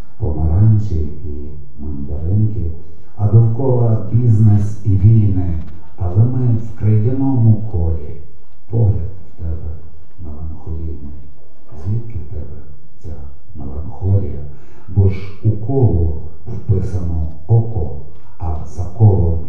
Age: 50-69